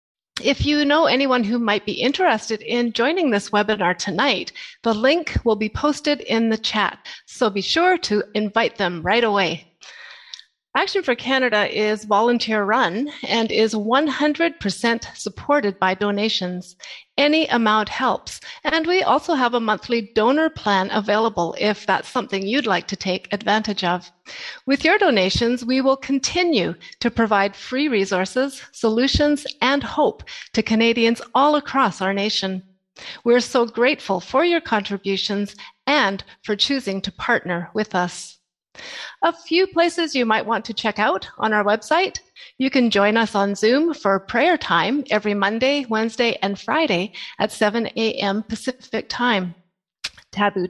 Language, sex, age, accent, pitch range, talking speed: English, female, 40-59, American, 205-275 Hz, 150 wpm